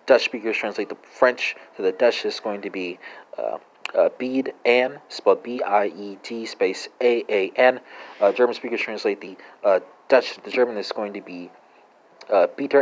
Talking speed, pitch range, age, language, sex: 160 wpm, 100-130 Hz, 30-49, English, male